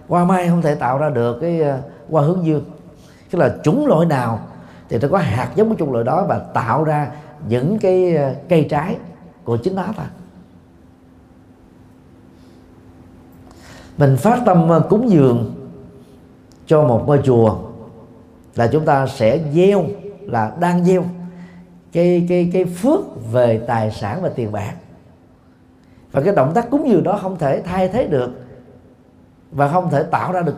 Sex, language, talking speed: male, Vietnamese, 165 wpm